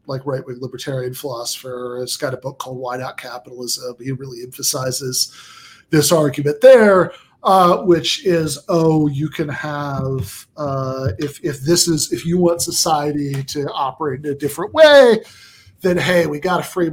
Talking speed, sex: 165 wpm, male